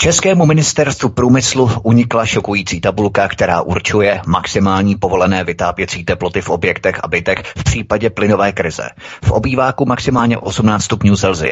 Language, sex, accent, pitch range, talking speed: Czech, male, native, 95-120 Hz, 125 wpm